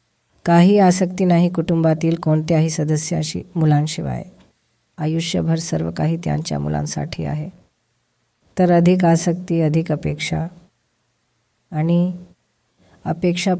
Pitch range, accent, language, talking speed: 150-170 Hz, native, Gujarati, 95 wpm